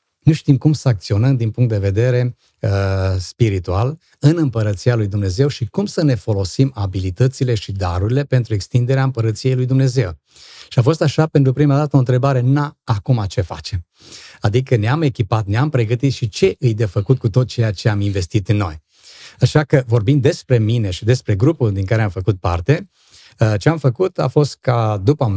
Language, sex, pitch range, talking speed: Romanian, male, 110-145 Hz, 185 wpm